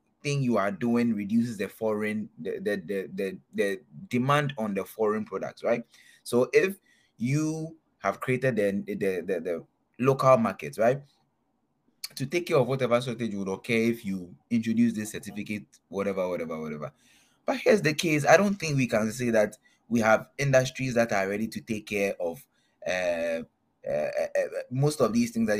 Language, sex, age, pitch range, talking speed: English, male, 20-39, 100-135 Hz, 180 wpm